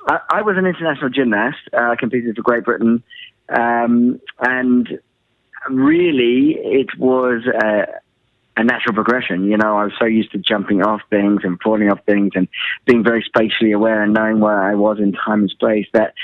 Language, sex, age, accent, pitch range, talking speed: English, male, 20-39, British, 105-125 Hz, 175 wpm